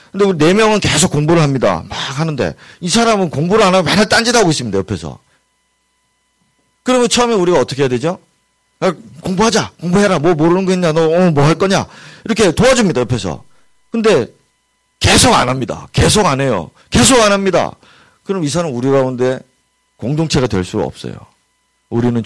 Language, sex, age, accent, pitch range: Korean, male, 40-59, native, 125-195 Hz